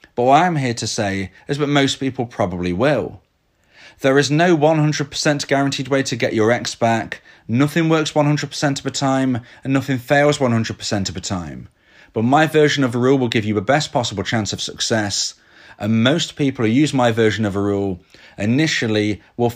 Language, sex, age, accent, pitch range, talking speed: English, male, 30-49, British, 110-150 Hz, 195 wpm